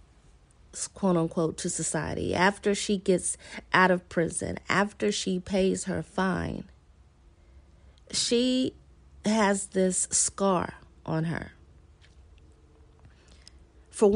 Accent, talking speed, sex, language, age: American, 95 wpm, female, English, 30-49